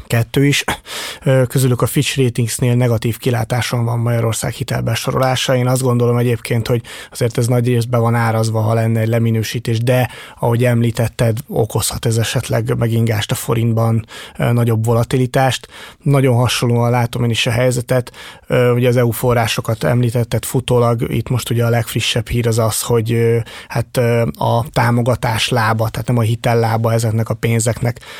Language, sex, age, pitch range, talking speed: Hungarian, male, 30-49, 115-125 Hz, 145 wpm